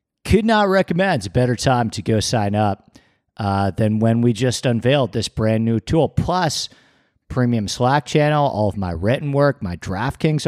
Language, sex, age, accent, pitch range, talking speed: English, male, 40-59, American, 100-140 Hz, 185 wpm